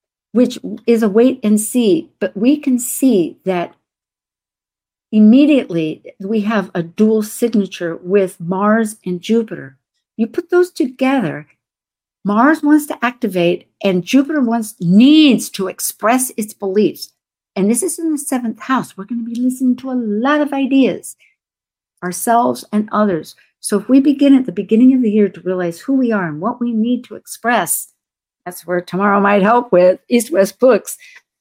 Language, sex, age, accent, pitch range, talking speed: English, female, 50-69, American, 170-245 Hz, 165 wpm